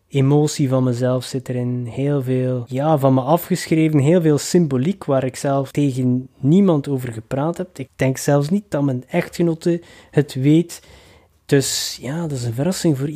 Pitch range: 125-145 Hz